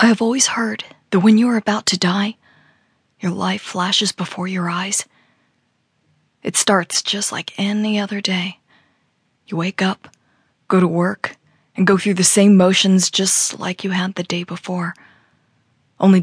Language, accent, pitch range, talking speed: English, American, 175-205 Hz, 165 wpm